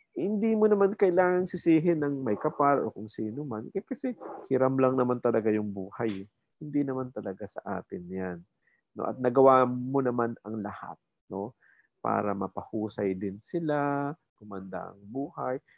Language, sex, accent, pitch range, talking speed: Filipino, male, native, 110-145 Hz, 155 wpm